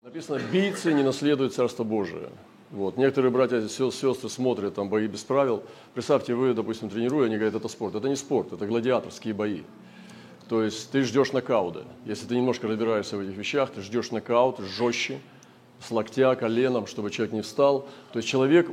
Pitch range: 110-130 Hz